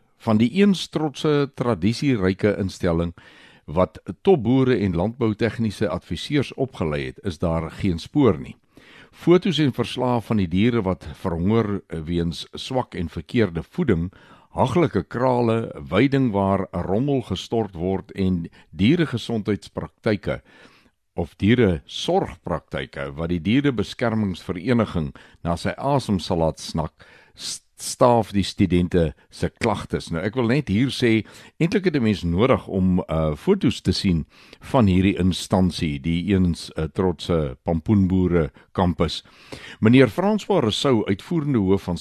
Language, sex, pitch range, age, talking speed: Swedish, male, 85-120 Hz, 60-79, 120 wpm